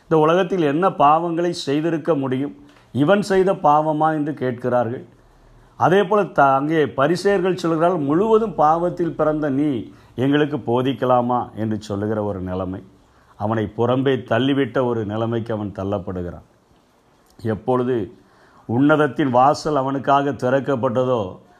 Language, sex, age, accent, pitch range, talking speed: Tamil, male, 50-69, native, 125-155 Hz, 110 wpm